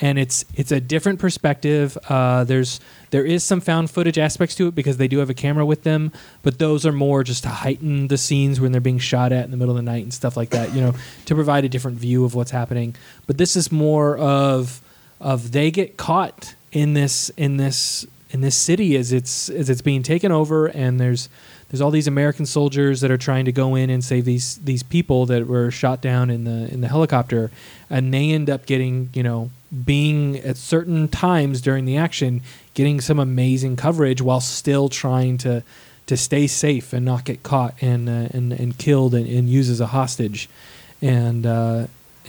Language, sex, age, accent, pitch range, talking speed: English, male, 20-39, American, 125-145 Hz, 215 wpm